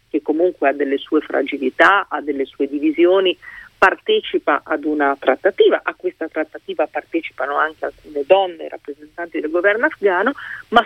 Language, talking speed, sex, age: Italian, 145 wpm, female, 40-59